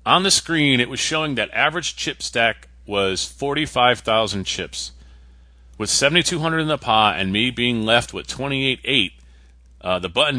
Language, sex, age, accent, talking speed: English, male, 40-59, American, 190 wpm